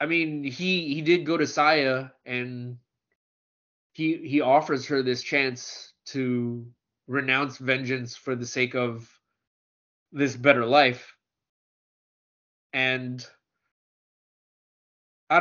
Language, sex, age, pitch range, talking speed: English, male, 20-39, 120-140 Hz, 105 wpm